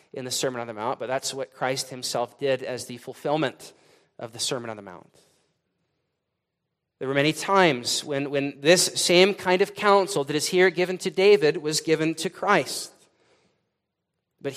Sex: male